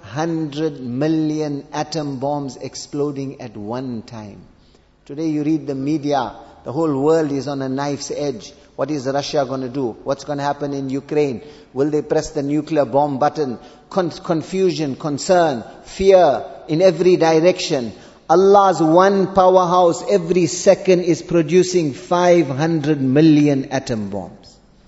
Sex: male